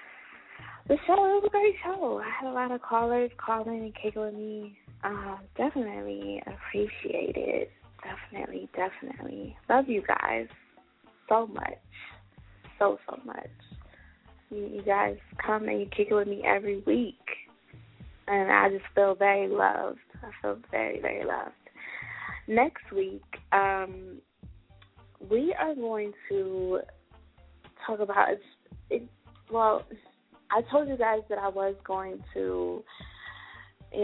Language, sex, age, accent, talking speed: English, female, 20-39, American, 140 wpm